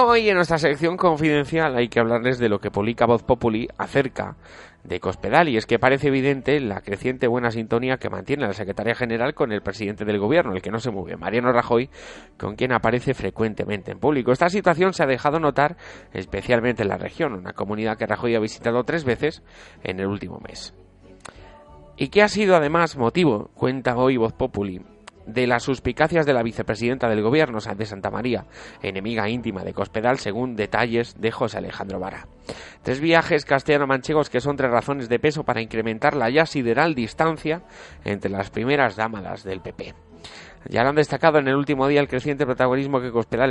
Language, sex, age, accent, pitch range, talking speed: Spanish, male, 30-49, Spanish, 110-140 Hz, 190 wpm